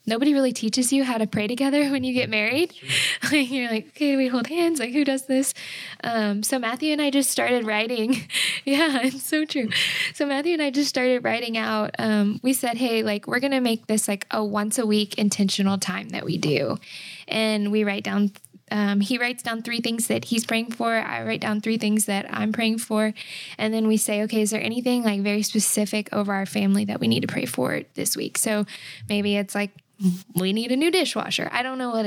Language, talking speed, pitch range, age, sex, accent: English, 225 wpm, 205-245 Hz, 10-29, female, American